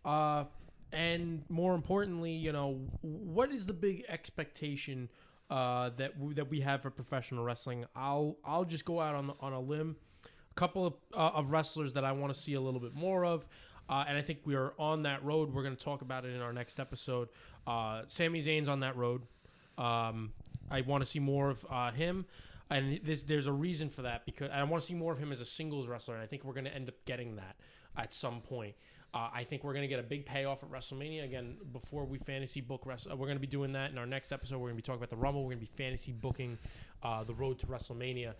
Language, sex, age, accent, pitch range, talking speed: English, male, 20-39, American, 120-145 Hz, 250 wpm